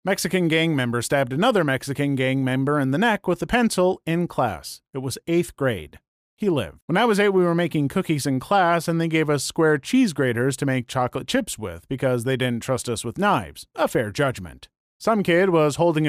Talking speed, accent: 215 wpm, American